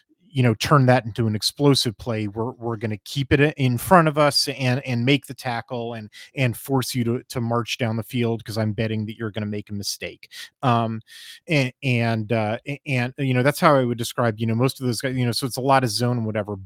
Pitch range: 115-135 Hz